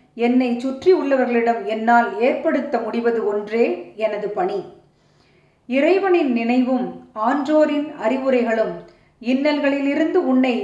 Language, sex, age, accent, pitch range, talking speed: Tamil, female, 30-49, native, 235-295 Hz, 85 wpm